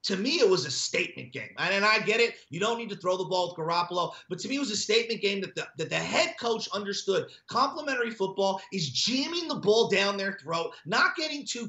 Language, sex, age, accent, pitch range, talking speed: English, male, 30-49, American, 185-235 Hz, 240 wpm